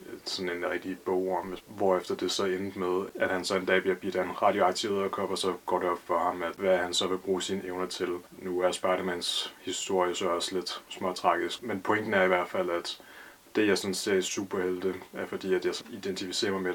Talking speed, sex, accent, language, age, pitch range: 235 wpm, male, Danish, English, 20-39, 90-100 Hz